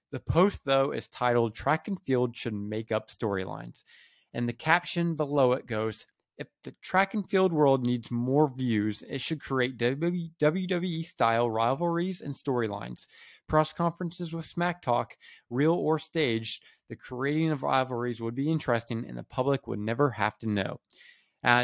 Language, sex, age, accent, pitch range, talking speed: English, male, 20-39, American, 110-140 Hz, 160 wpm